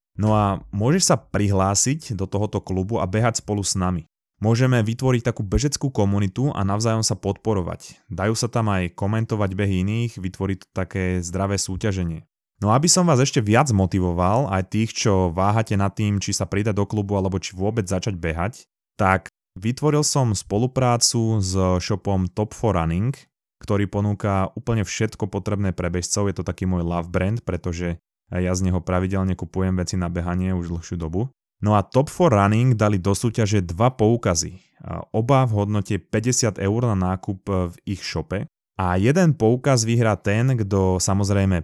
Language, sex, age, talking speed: Slovak, male, 20-39, 165 wpm